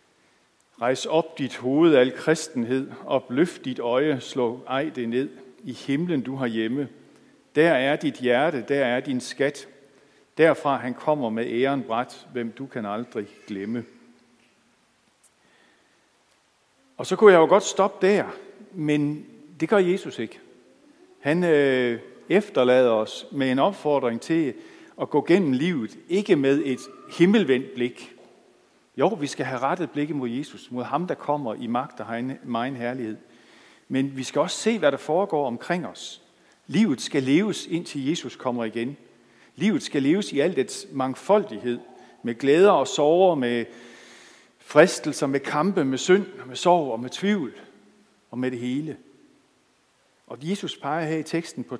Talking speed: 155 wpm